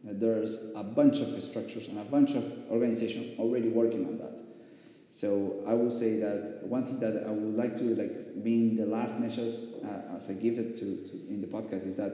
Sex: male